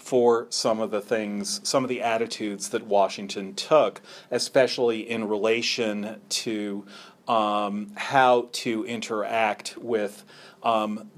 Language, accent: English, American